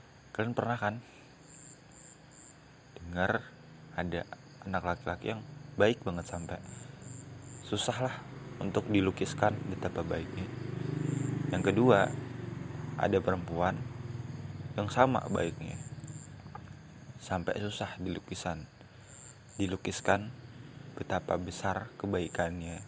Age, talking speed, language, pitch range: 20-39, 80 wpm, Indonesian, 90-130 Hz